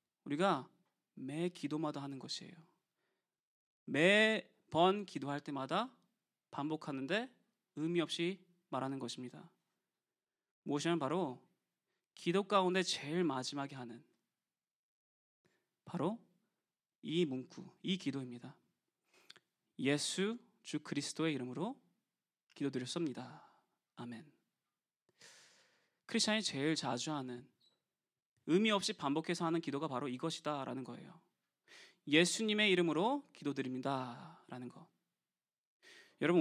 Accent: native